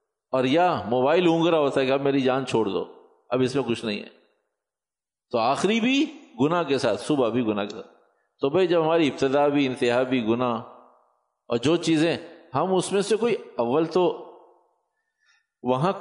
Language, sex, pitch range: Urdu, male, 140-185 Hz